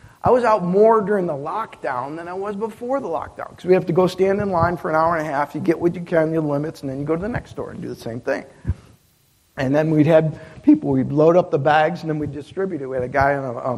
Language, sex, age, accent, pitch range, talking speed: English, male, 50-69, American, 125-165 Hz, 300 wpm